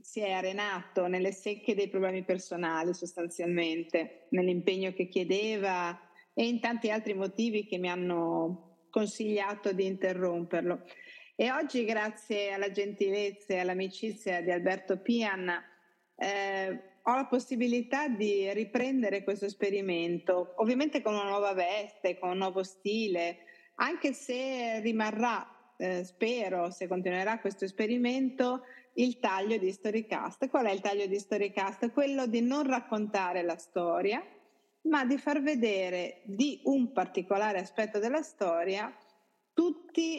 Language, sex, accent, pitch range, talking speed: Italian, female, native, 185-235 Hz, 130 wpm